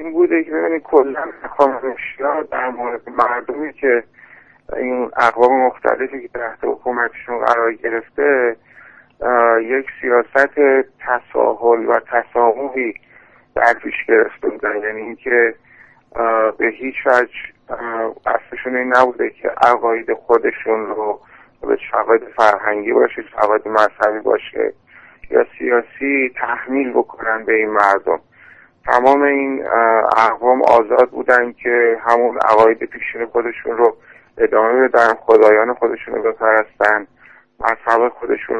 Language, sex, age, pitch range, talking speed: Persian, male, 50-69, 115-130 Hz, 110 wpm